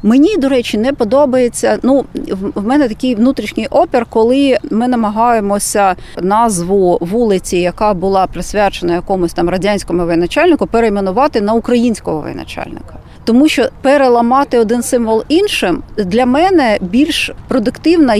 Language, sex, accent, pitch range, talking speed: Ukrainian, female, native, 210-265 Hz, 120 wpm